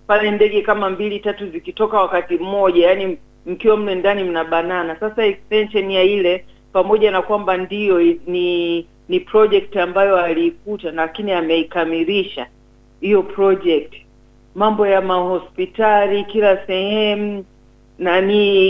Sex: female